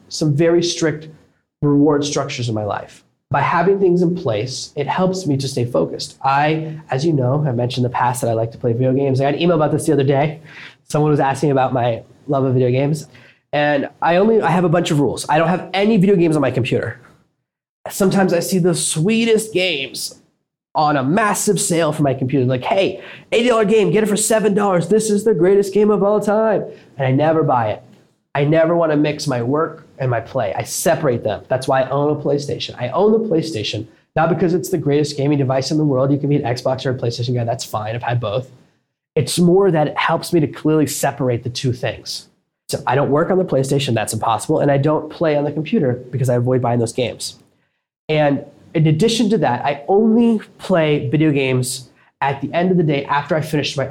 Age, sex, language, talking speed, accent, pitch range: 20-39, male, English, 230 wpm, American, 130-175 Hz